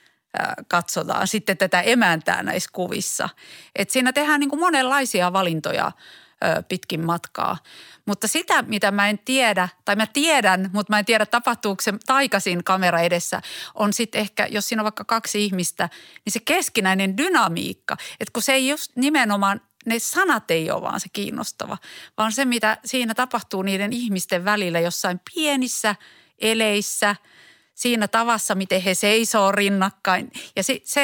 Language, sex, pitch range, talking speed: Finnish, female, 190-240 Hz, 150 wpm